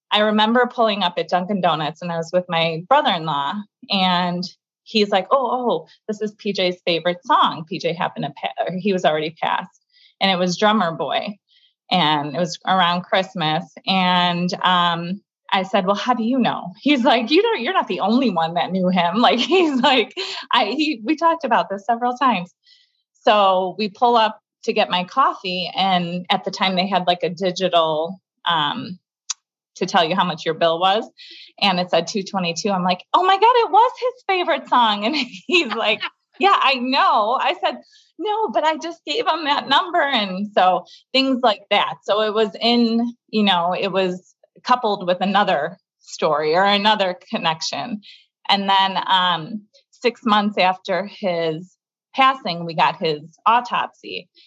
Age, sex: 20-39, female